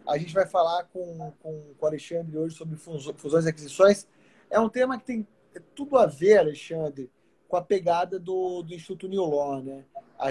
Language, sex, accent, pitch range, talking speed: Portuguese, male, Brazilian, 165-210 Hz, 190 wpm